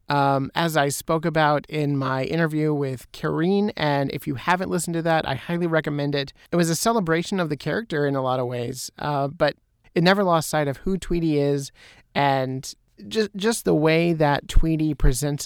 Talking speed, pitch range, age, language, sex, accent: 200 wpm, 140-160 Hz, 30-49, English, male, American